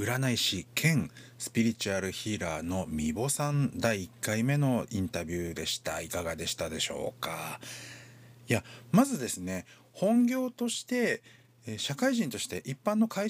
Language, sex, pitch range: Japanese, male, 110-175 Hz